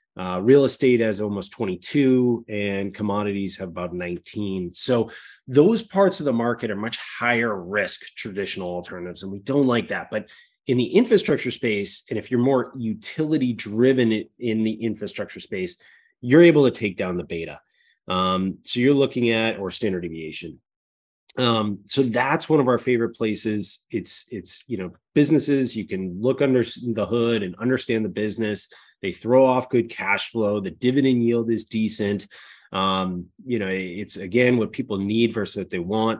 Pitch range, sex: 105-125 Hz, male